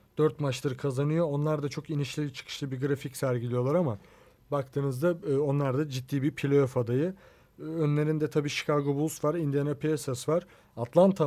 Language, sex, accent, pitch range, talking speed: Turkish, male, native, 130-160 Hz, 150 wpm